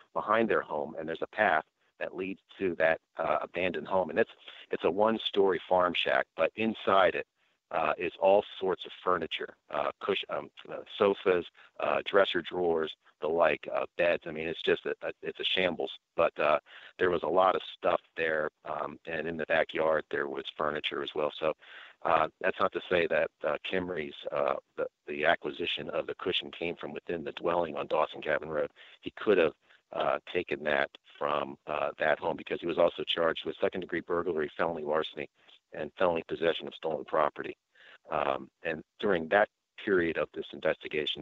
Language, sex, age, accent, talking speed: English, male, 50-69, American, 190 wpm